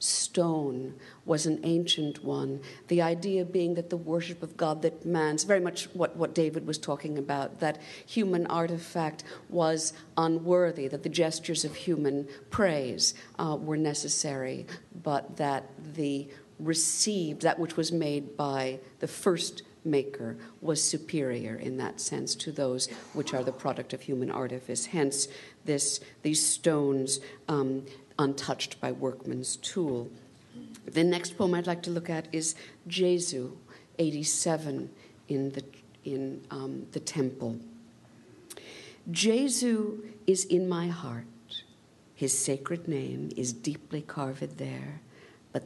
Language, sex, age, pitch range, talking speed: English, female, 50-69, 135-170 Hz, 135 wpm